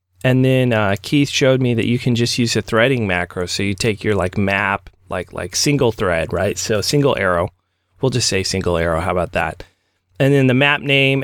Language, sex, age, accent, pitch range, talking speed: English, male, 30-49, American, 100-135 Hz, 220 wpm